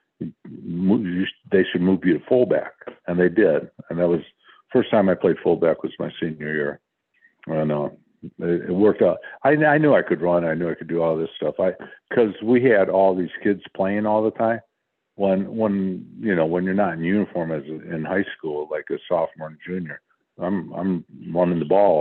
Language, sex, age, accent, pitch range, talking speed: English, male, 60-79, American, 80-95 Hz, 205 wpm